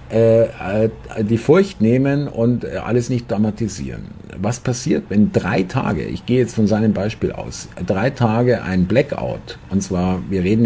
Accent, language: German, German